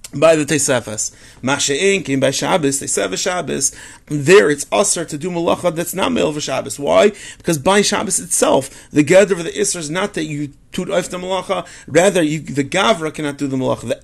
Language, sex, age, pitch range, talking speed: English, male, 30-49, 145-190 Hz, 190 wpm